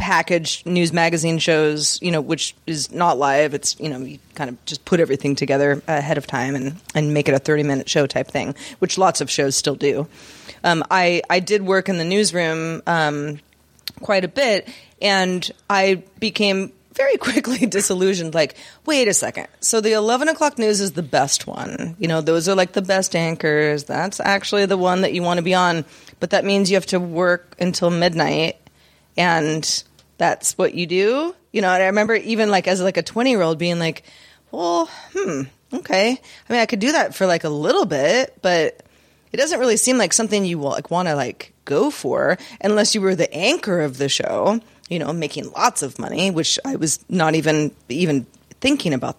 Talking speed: 200 wpm